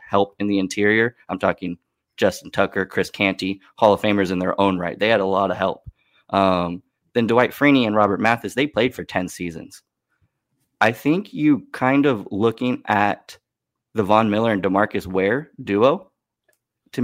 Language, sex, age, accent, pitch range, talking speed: English, male, 20-39, American, 100-125 Hz, 175 wpm